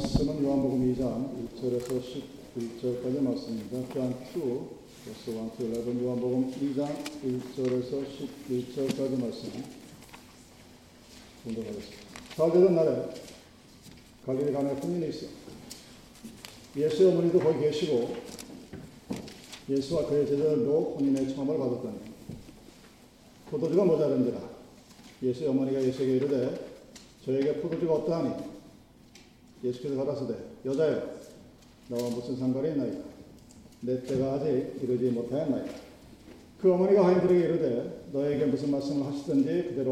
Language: Korean